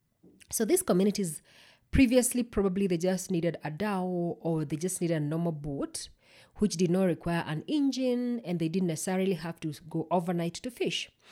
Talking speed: 175 wpm